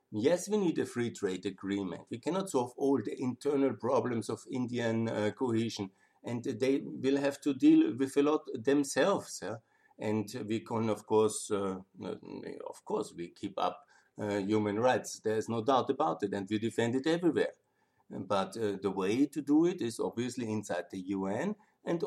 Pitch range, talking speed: 105-135 Hz, 180 wpm